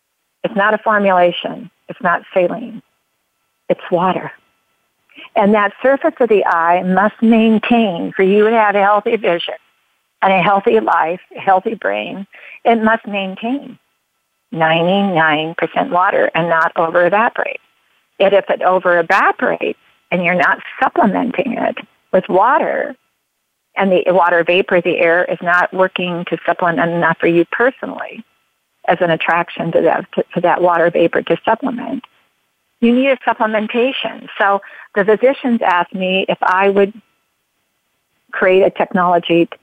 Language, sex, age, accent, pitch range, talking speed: English, female, 50-69, American, 175-225 Hz, 135 wpm